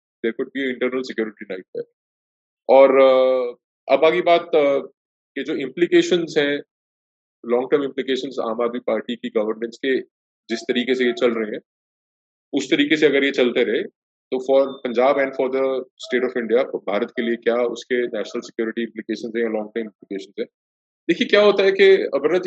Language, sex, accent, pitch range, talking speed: English, male, Indian, 120-195 Hz, 150 wpm